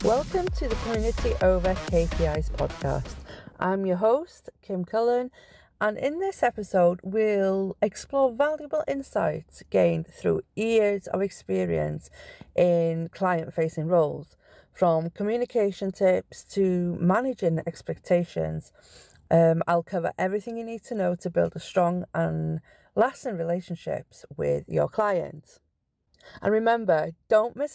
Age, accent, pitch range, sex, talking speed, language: 40-59, British, 165-220 Hz, female, 120 wpm, English